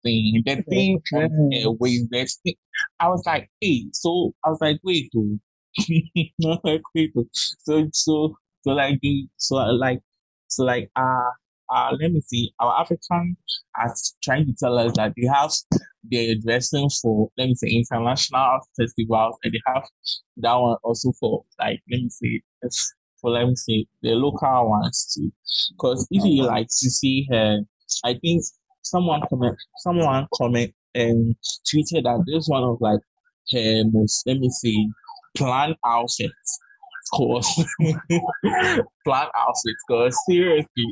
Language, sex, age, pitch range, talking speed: English, male, 20-39, 115-160 Hz, 145 wpm